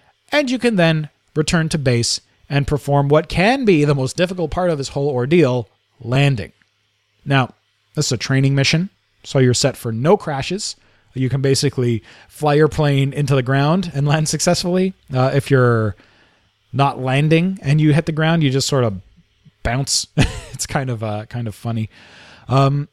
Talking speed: 180 wpm